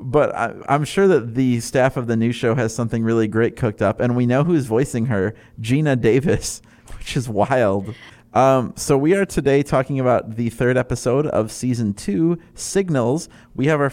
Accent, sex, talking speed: American, male, 190 wpm